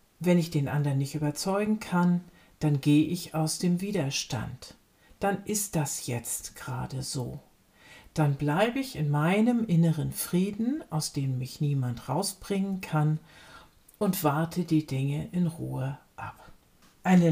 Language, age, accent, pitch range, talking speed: German, 50-69, German, 155-200 Hz, 140 wpm